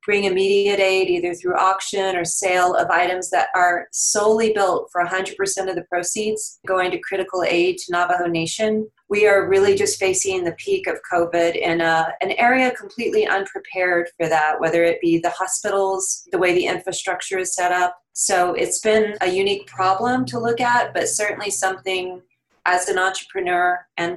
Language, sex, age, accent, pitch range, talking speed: English, female, 30-49, American, 175-215 Hz, 175 wpm